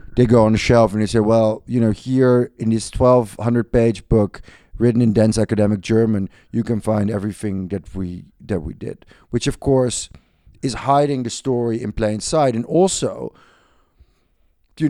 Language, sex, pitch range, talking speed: English, male, 105-125 Hz, 180 wpm